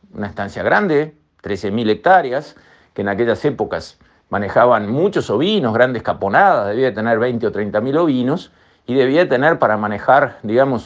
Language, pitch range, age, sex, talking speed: Spanish, 115-150 Hz, 50-69, male, 145 wpm